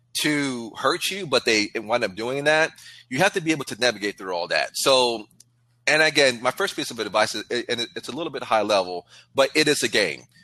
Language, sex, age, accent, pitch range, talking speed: English, male, 30-49, American, 105-135 Hz, 230 wpm